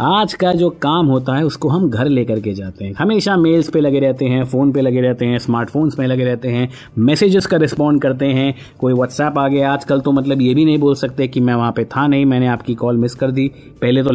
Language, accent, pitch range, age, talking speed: Hindi, native, 125-165 Hz, 30-49, 255 wpm